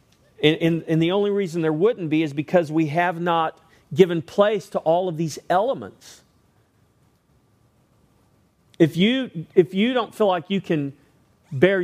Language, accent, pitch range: English, American, 145-185 Hz